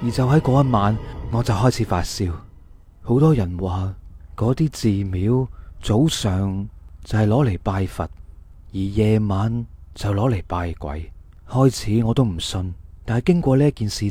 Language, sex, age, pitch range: Chinese, male, 30-49, 90-125 Hz